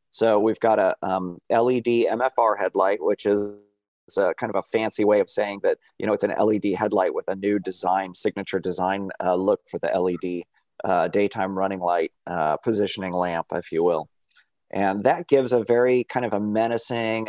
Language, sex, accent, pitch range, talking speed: English, male, American, 100-125 Hz, 190 wpm